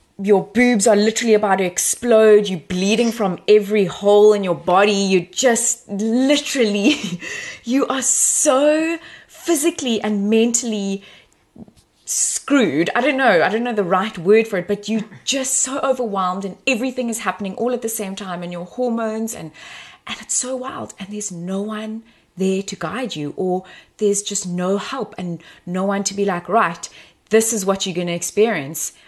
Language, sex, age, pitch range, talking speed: English, female, 20-39, 190-245 Hz, 175 wpm